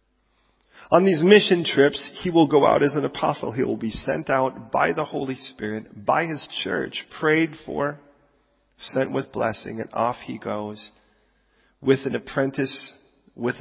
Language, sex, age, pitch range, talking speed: English, male, 40-59, 110-145 Hz, 160 wpm